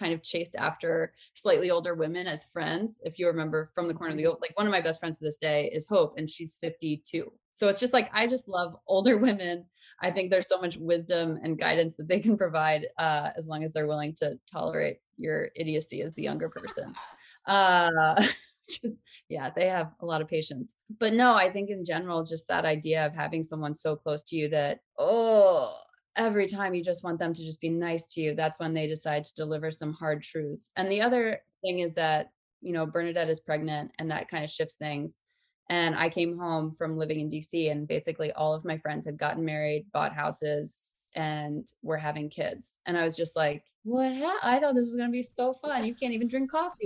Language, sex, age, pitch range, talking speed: English, female, 20-39, 155-200 Hz, 225 wpm